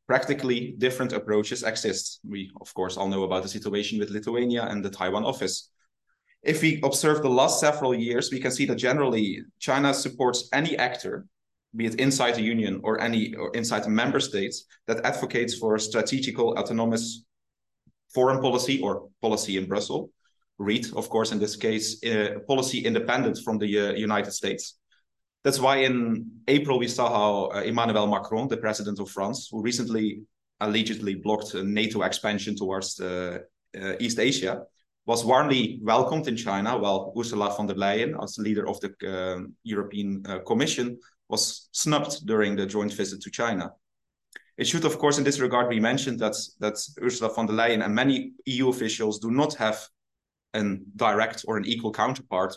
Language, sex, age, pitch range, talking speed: Finnish, male, 30-49, 105-125 Hz, 175 wpm